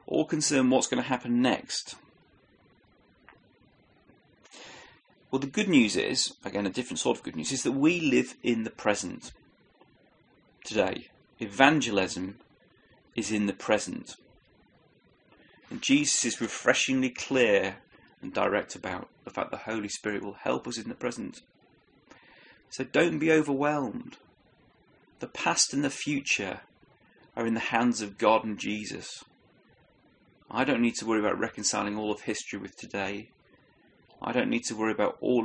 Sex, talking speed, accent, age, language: male, 145 wpm, British, 30-49, English